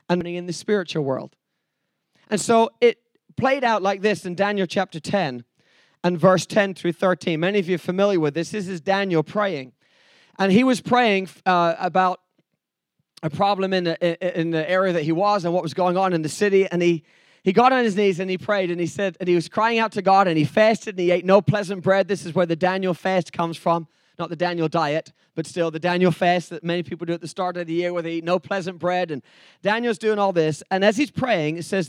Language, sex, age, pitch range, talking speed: English, male, 20-39, 165-200 Hz, 240 wpm